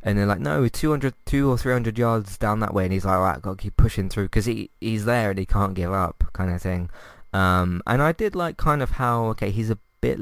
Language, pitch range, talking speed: English, 90-105 Hz, 280 wpm